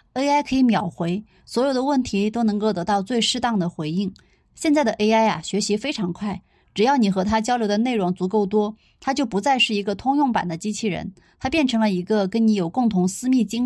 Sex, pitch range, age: female, 190-235 Hz, 20-39